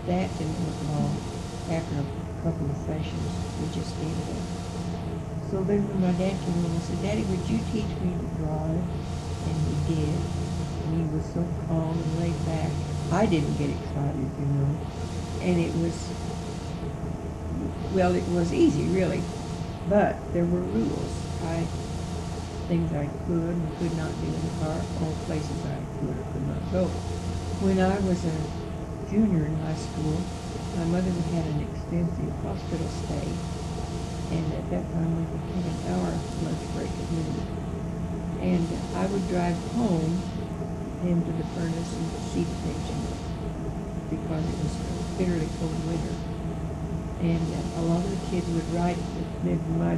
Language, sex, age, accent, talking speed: English, female, 60-79, American, 165 wpm